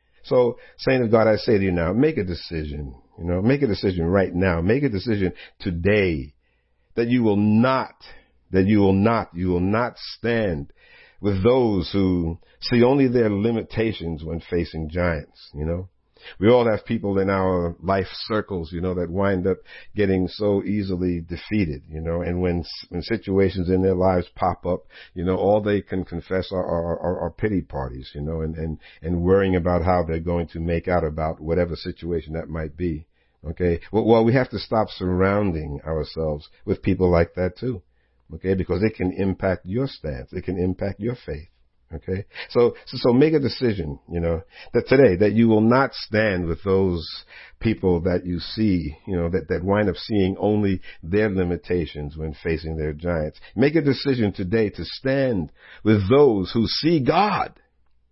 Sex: male